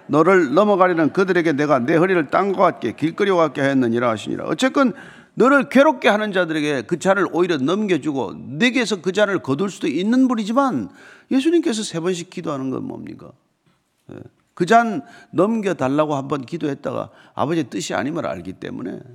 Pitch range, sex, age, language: 160-250 Hz, male, 40-59, Korean